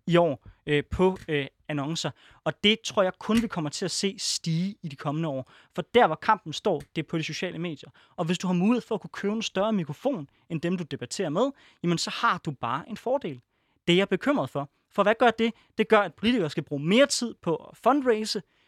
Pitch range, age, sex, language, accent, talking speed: 145-195 Hz, 20-39, male, Danish, native, 235 wpm